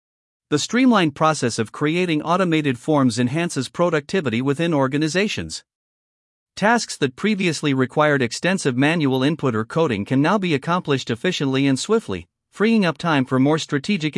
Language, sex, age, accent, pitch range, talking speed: English, male, 50-69, American, 130-175 Hz, 140 wpm